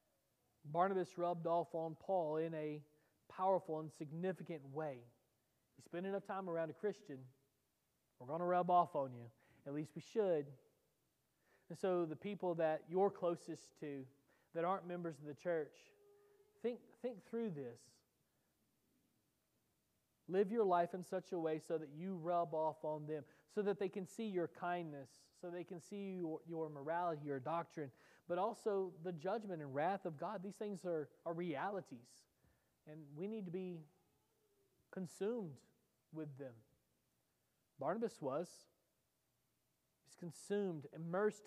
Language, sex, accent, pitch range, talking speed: English, male, American, 150-185 Hz, 150 wpm